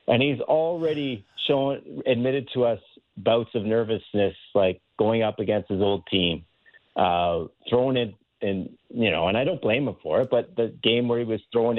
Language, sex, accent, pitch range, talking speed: English, male, American, 105-130 Hz, 195 wpm